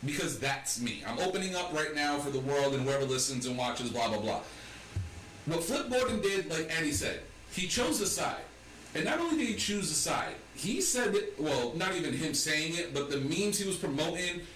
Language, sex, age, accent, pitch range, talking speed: English, male, 40-59, American, 140-195 Hz, 220 wpm